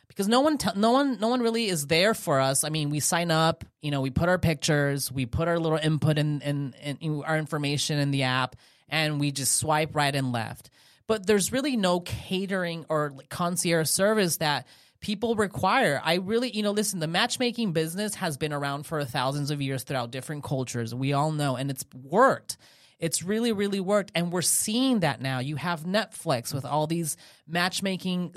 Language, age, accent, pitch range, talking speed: English, 30-49, American, 140-180 Hz, 200 wpm